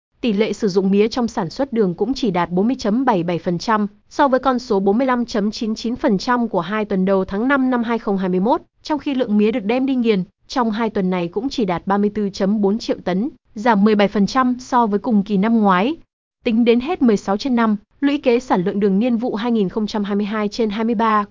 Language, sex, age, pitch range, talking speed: Vietnamese, female, 20-39, 200-245 Hz, 180 wpm